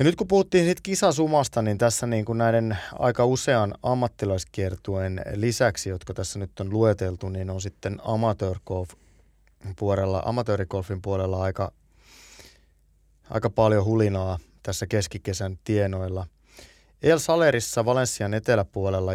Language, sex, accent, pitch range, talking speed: Finnish, male, native, 95-110 Hz, 120 wpm